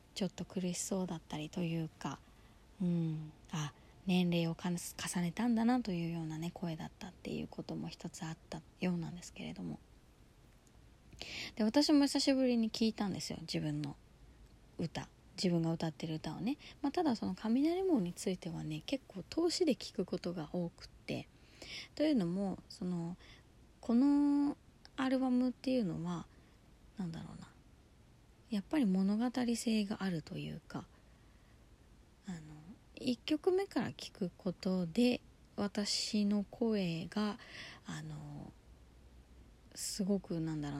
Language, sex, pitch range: Japanese, female, 165-225 Hz